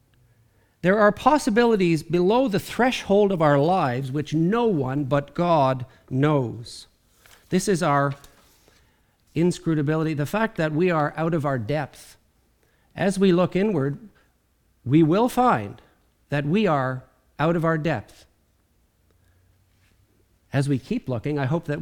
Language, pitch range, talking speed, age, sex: English, 125-165 Hz, 135 wpm, 50-69, male